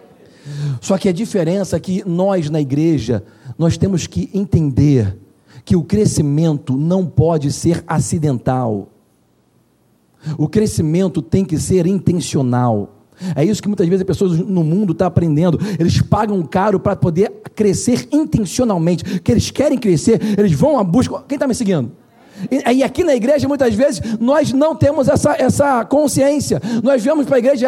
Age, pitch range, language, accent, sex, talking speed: 40-59, 170-260 Hz, Portuguese, Brazilian, male, 160 wpm